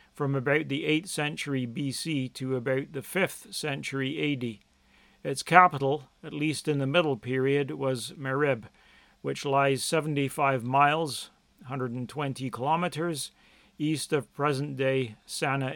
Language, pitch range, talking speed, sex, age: English, 130-155 Hz, 120 wpm, male, 40-59